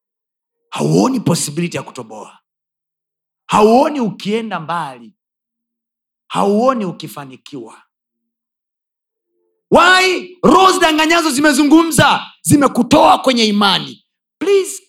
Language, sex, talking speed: Swahili, male, 70 wpm